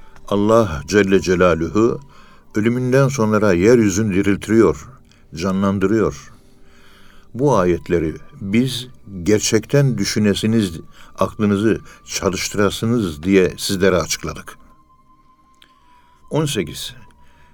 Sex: male